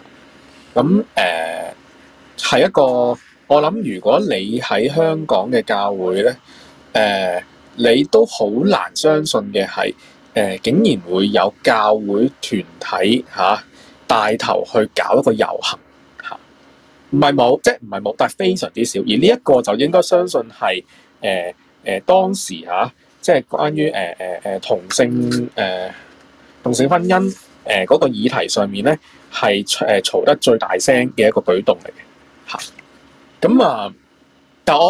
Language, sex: Chinese, male